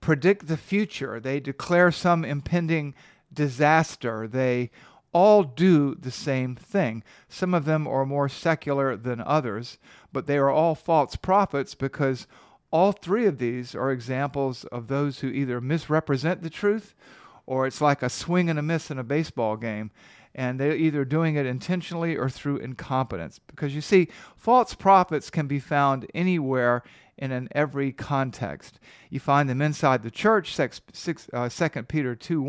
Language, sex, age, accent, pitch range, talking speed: English, male, 50-69, American, 130-165 Hz, 160 wpm